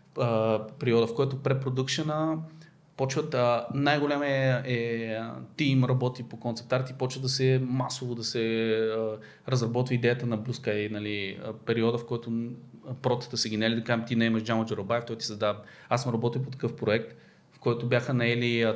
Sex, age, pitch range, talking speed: male, 20-39, 110-130 Hz, 165 wpm